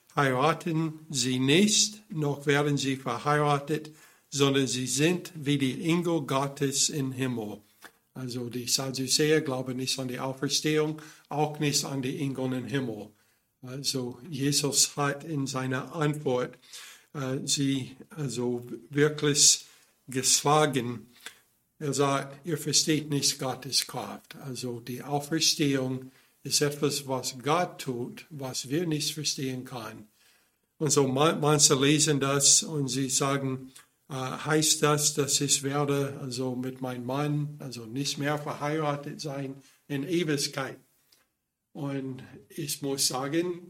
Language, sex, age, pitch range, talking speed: German, male, 60-79, 130-155 Hz, 125 wpm